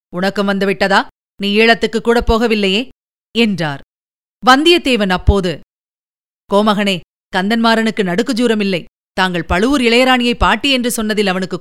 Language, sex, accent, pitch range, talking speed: Tamil, female, native, 190-235 Hz, 95 wpm